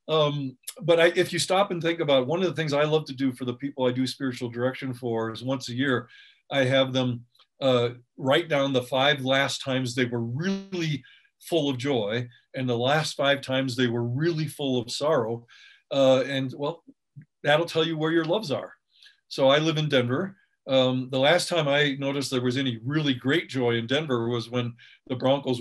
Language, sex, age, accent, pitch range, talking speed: English, male, 50-69, American, 125-160 Hz, 205 wpm